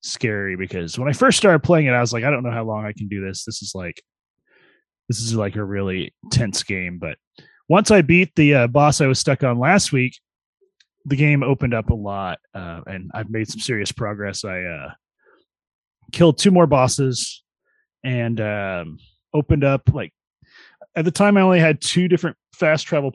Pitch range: 100-140 Hz